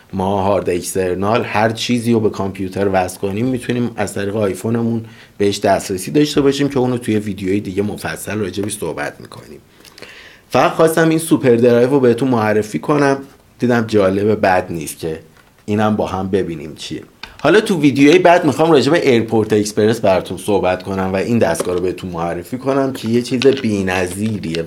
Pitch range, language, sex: 95-125 Hz, Persian, male